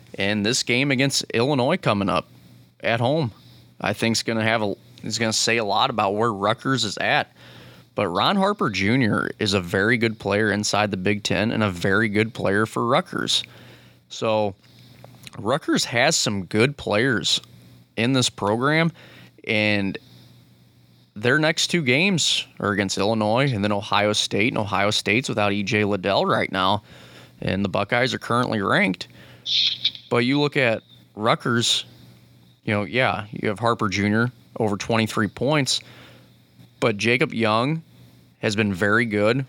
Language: English